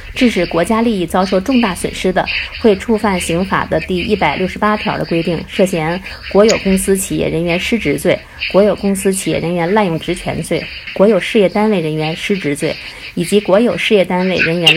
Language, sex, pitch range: Chinese, female, 170-210 Hz